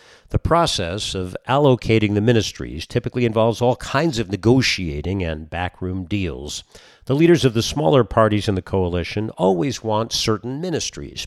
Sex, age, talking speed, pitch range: male, 50-69, 150 wpm, 90-120 Hz